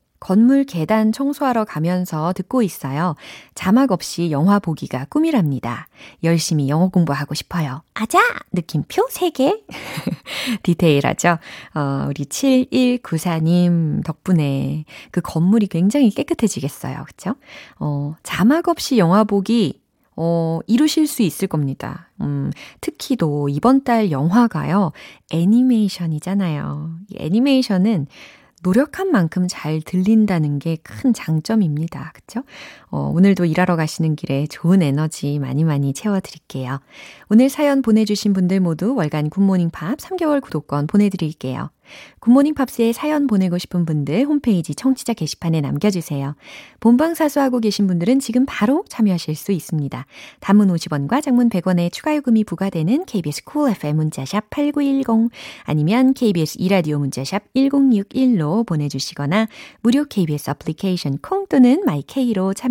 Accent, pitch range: native, 155-240 Hz